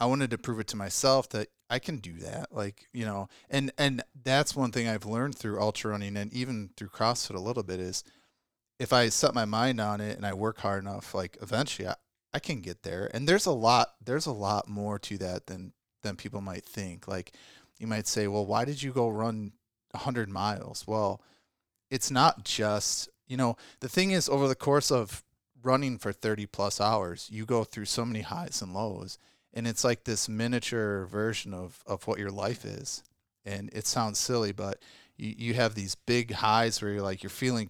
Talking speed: 215 wpm